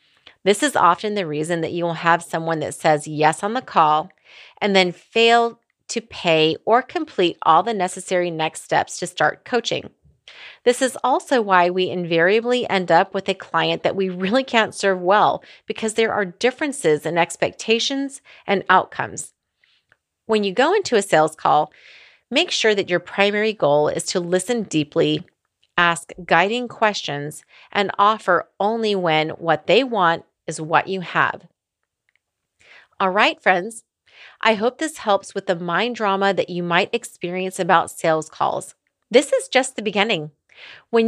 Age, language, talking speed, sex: 30-49, English, 160 wpm, female